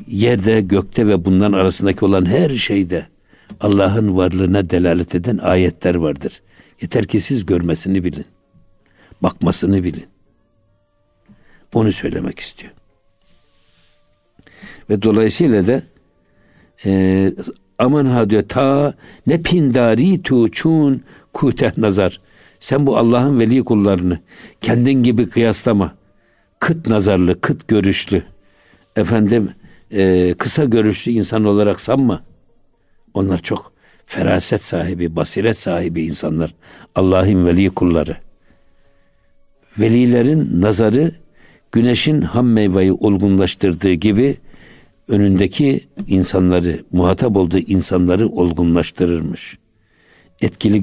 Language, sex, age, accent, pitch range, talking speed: Turkish, male, 60-79, native, 95-115 Hz, 95 wpm